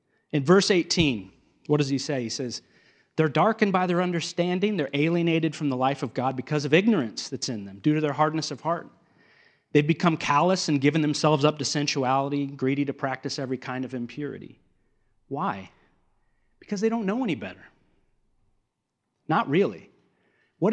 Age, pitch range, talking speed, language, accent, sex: 40-59, 130-170 Hz, 170 wpm, English, American, male